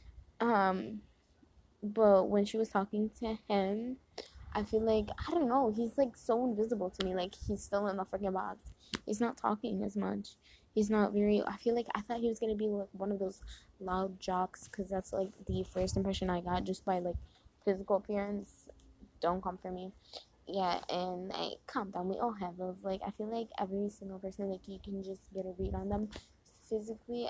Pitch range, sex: 185-215 Hz, female